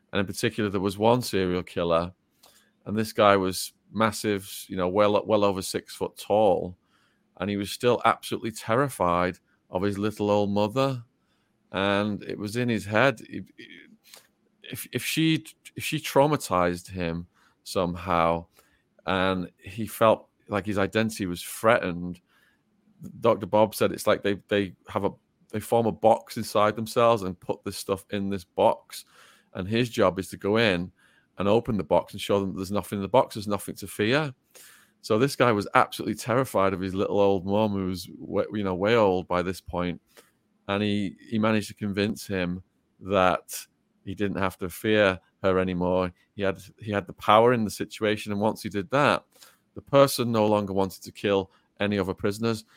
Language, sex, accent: English, male, British